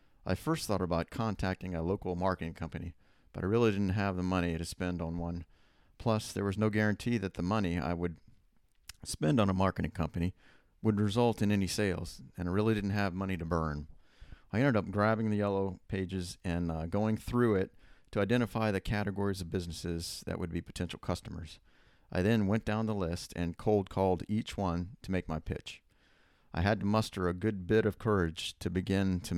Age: 40-59